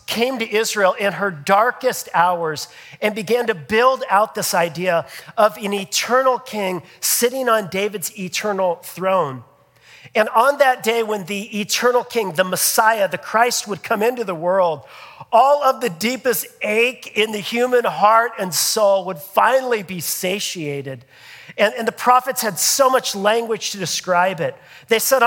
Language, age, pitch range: English, 40-59, 190-235 Hz